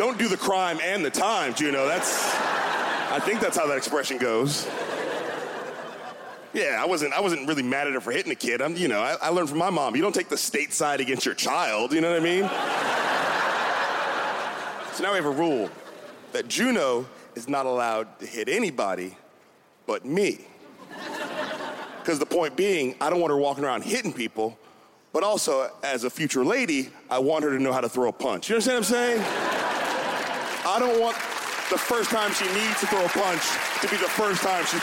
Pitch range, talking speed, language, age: 160-250 Hz, 205 wpm, English, 30-49